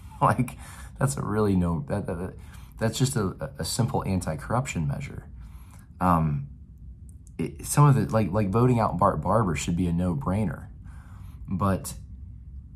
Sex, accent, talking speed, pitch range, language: male, American, 125 wpm, 80-95 Hz, English